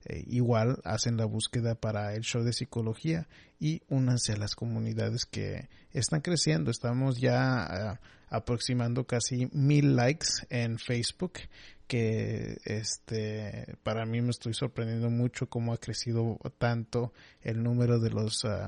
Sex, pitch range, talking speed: male, 110-125 Hz, 135 wpm